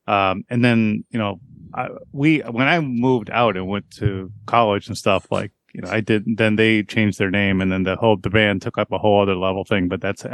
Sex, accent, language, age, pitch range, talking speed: male, American, English, 30-49, 100-120 Hz, 240 wpm